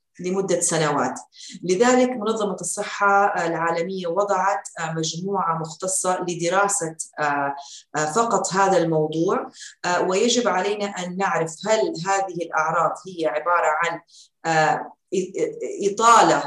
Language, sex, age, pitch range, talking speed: Arabic, female, 30-49, 165-205 Hz, 85 wpm